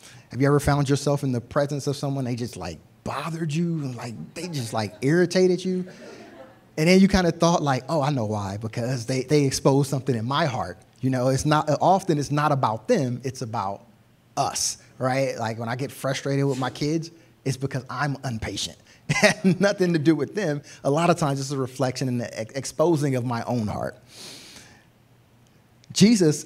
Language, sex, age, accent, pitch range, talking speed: English, male, 30-49, American, 120-150 Hz, 195 wpm